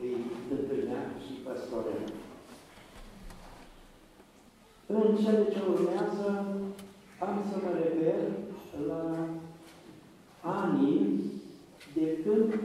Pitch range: 155-205 Hz